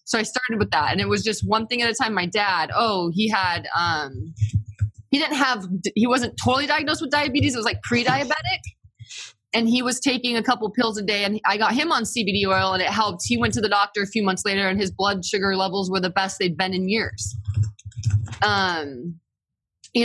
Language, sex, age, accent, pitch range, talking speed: English, female, 20-39, American, 185-240 Hz, 215 wpm